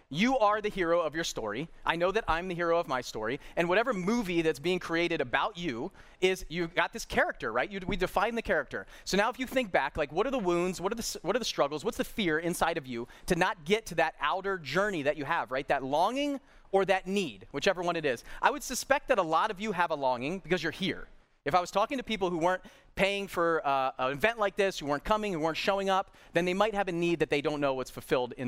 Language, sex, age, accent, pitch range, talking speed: English, male, 30-49, American, 150-200 Hz, 270 wpm